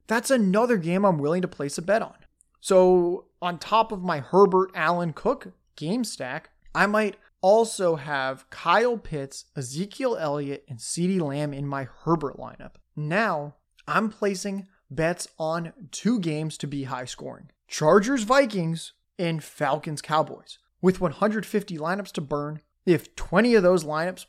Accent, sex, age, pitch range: American, male, 20-39, 150-195 Hz